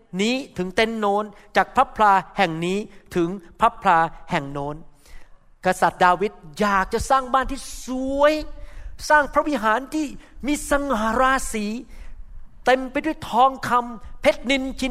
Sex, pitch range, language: male, 200-265 Hz, Thai